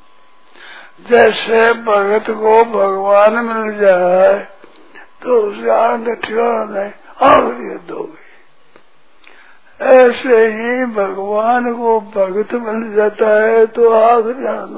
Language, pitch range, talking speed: Hindi, 205-240 Hz, 95 wpm